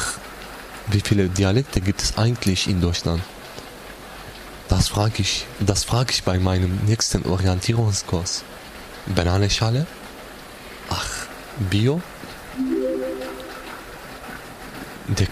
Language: German